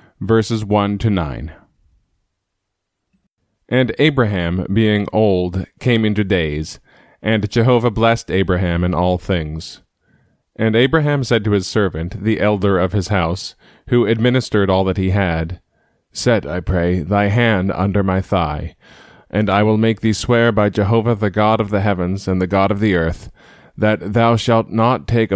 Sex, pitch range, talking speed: male, 95-110 Hz, 160 wpm